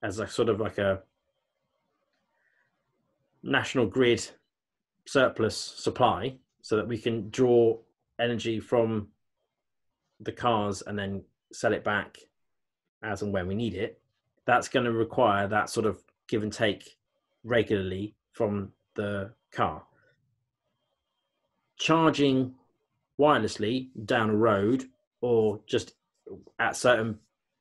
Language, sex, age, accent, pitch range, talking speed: English, male, 20-39, British, 105-120 Hz, 115 wpm